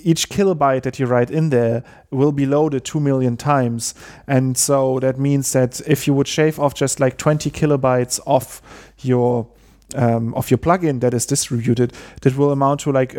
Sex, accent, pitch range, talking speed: male, German, 125-145 Hz, 185 wpm